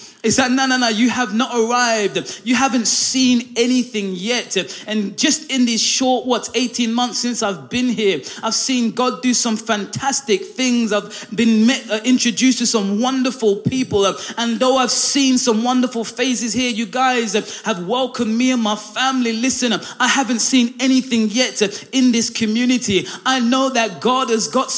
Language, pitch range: English, 210-250 Hz